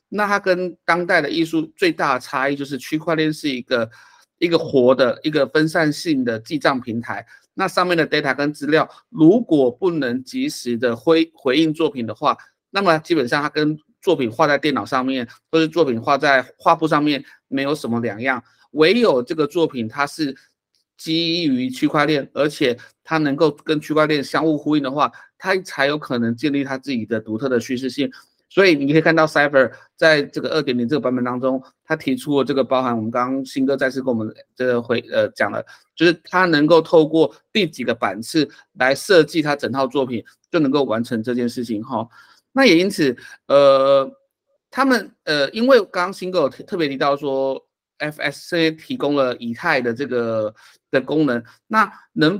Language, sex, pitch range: Chinese, male, 130-165 Hz